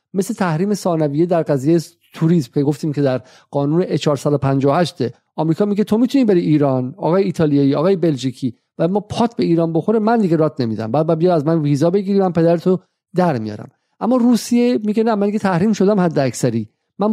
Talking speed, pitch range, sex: 180 wpm, 160-205 Hz, male